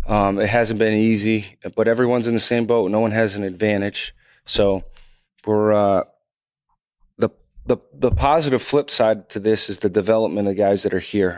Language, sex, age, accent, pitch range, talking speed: English, male, 30-49, American, 90-105 Hz, 190 wpm